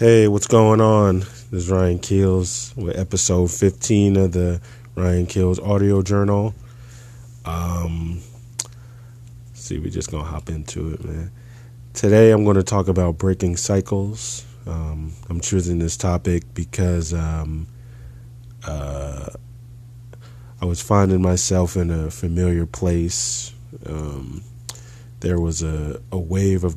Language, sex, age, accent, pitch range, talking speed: English, male, 20-39, American, 85-120 Hz, 130 wpm